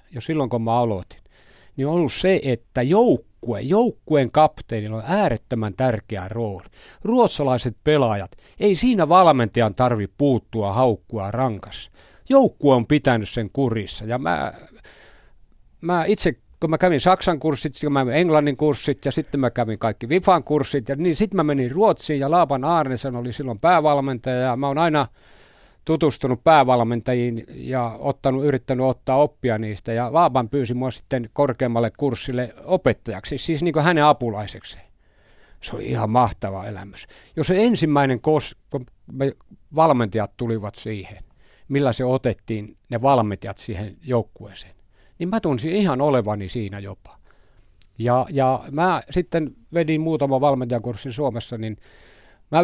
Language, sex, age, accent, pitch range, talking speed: Finnish, male, 50-69, native, 115-150 Hz, 140 wpm